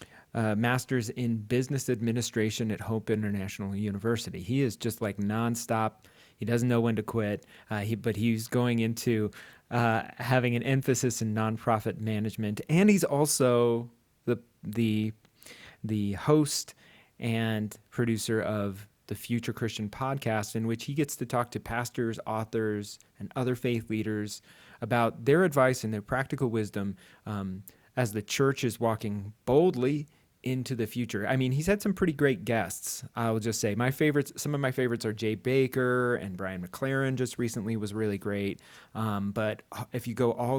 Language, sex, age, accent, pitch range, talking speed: English, male, 30-49, American, 110-125 Hz, 165 wpm